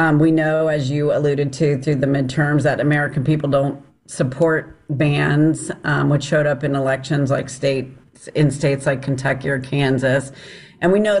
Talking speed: 175 wpm